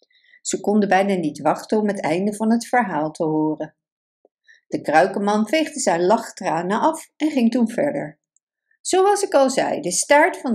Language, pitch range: Dutch, 190-310 Hz